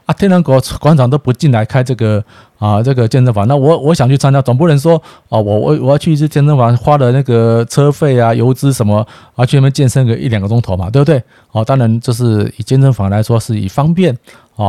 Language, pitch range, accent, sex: Chinese, 110-135 Hz, native, male